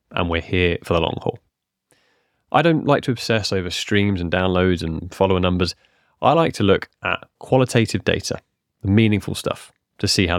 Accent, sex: British, male